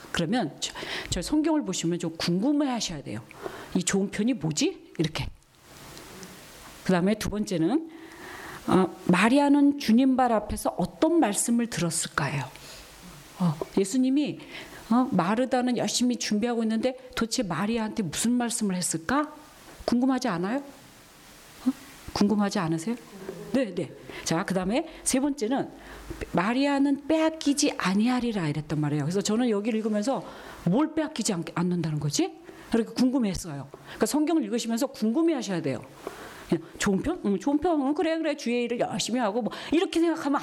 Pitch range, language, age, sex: 175-275 Hz, Korean, 40-59, female